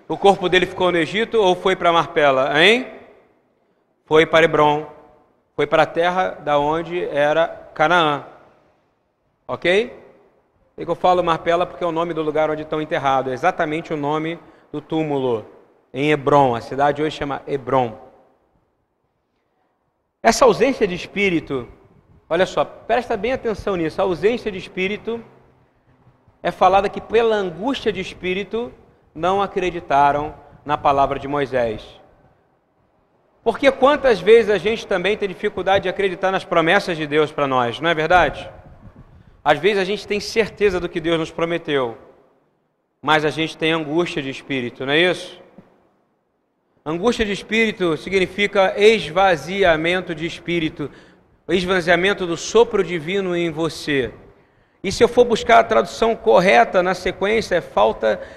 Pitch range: 155-200 Hz